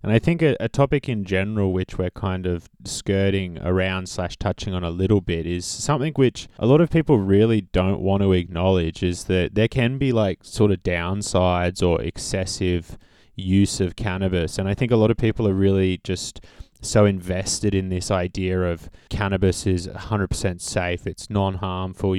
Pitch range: 90-105 Hz